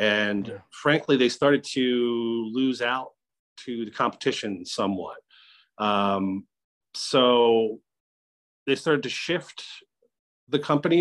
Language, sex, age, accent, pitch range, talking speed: English, male, 40-59, American, 105-125 Hz, 105 wpm